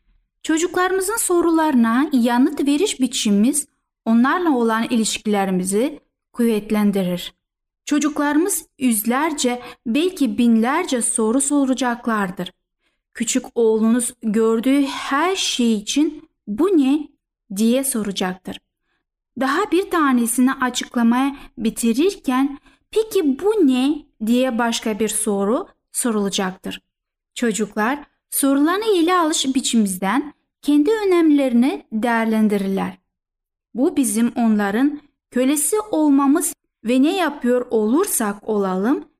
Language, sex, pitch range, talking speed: Turkish, female, 225-295 Hz, 85 wpm